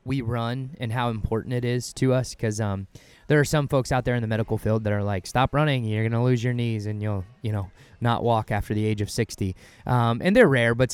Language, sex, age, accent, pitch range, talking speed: English, male, 20-39, American, 110-130 Hz, 265 wpm